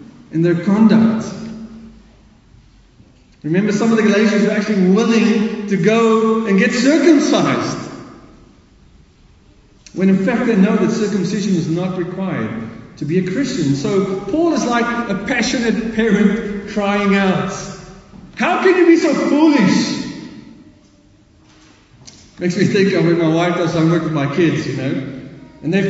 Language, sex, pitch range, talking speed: English, male, 185-255 Hz, 145 wpm